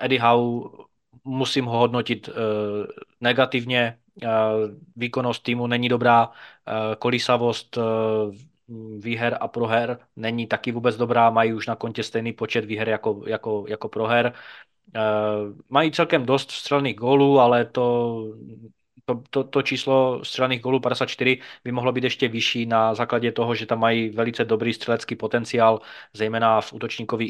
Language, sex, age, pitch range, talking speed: Czech, male, 20-39, 110-120 Hz, 145 wpm